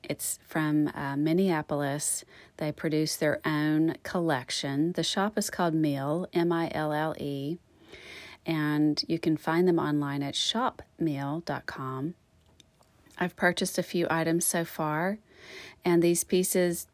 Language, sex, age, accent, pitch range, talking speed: English, female, 40-59, American, 150-185 Hz, 115 wpm